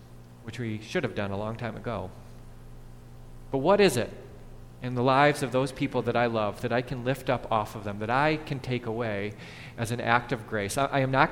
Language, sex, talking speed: English, male, 235 wpm